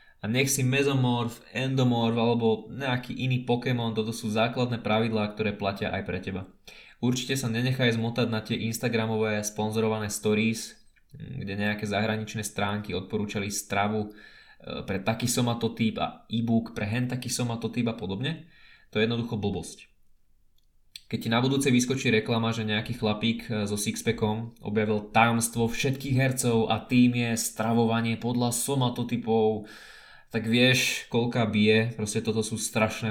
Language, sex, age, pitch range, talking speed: Slovak, male, 20-39, 105-120 Hz, 140 wpm